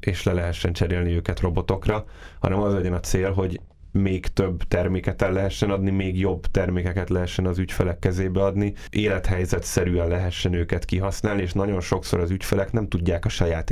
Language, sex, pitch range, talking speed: Hungarian, male, 85-100 Hz, 175 wpm